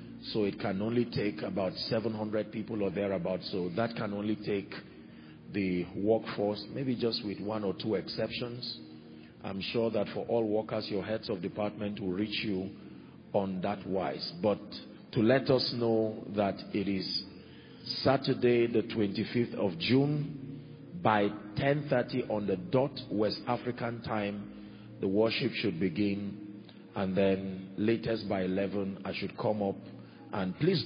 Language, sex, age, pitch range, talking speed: English, male, 40-59, 100-115 Hz, 150 wpm